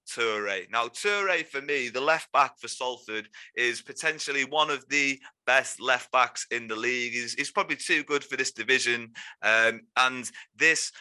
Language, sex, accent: English, male, British